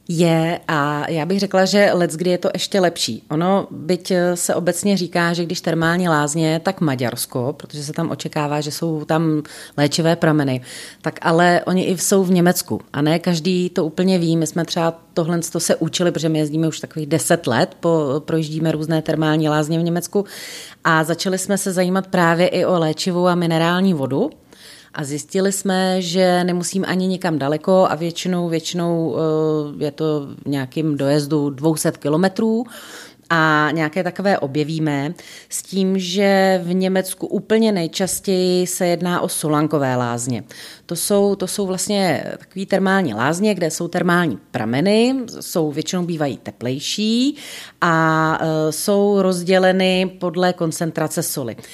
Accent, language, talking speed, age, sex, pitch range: native, Czech, 150 wpm, 30-49, female, 155-185 Hz